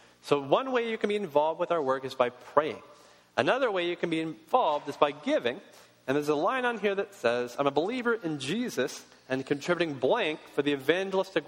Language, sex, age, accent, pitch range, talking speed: English, male, 40-59, American, 130-190 Hz, 215 wpm